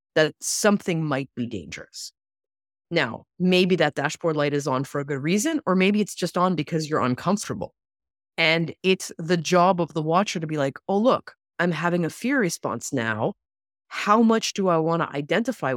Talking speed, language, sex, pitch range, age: 185 wpm, English, female, 145-195 Hz, 20-39